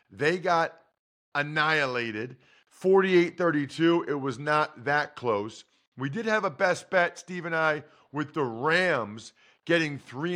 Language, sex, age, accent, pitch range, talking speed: English, male, 40-59, American, 130-175 Hz, 135 wpm